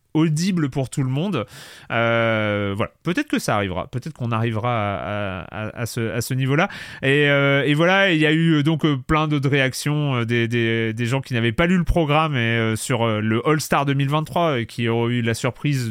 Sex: male